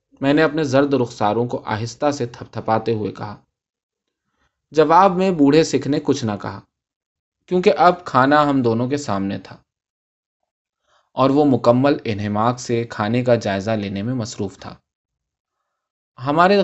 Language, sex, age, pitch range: Urdu, male, 20-39, 110-150 Hz